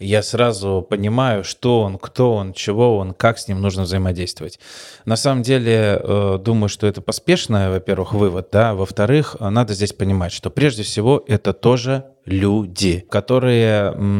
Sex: male